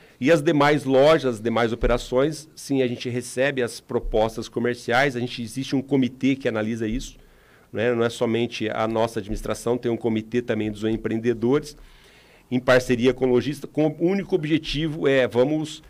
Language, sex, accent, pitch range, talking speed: Portuguese, male, Brazilian, 115-150 Hz, 175 wpm